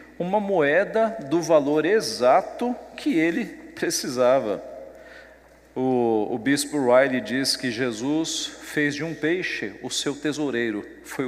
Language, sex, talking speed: Portuguese, male, 120 wpm